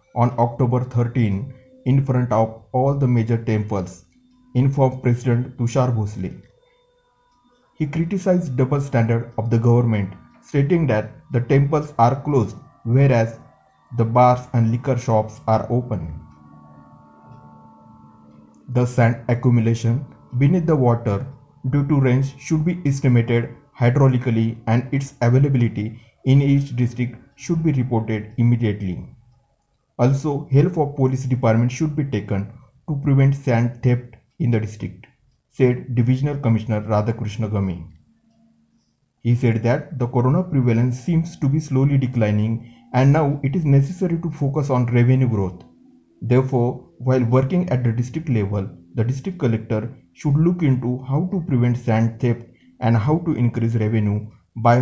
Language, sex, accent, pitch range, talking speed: Marathi, male, native, 115-140 Hz, 135 wpm